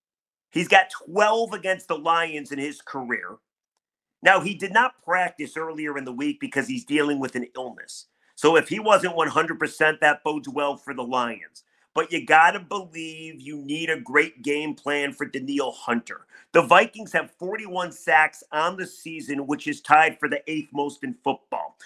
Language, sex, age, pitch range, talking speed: English, male, 40-59, 150-190 Hz, 180 wpm